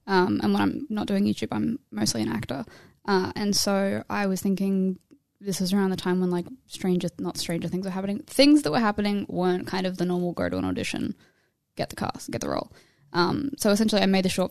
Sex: female